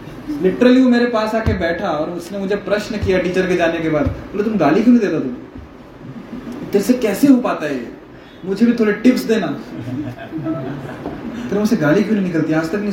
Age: 20-39